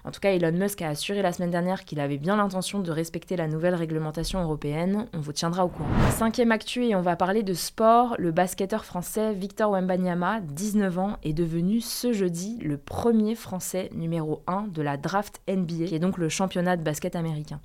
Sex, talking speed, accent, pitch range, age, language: female, 205 wpm, French, 165-205 Hz, 20-39, French